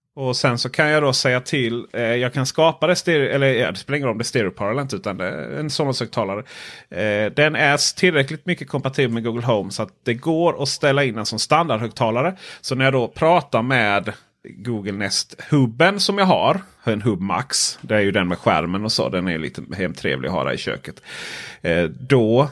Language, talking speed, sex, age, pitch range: Swedish, 220 wpm, male, 30-49, 105-140 Hz